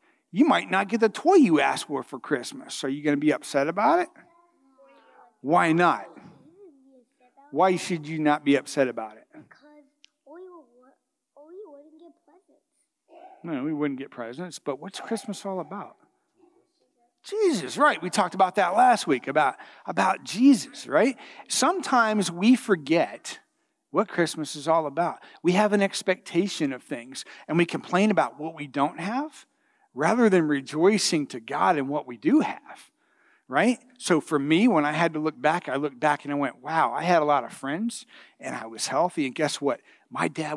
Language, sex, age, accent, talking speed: English, male, 40-59, American, 175 wpm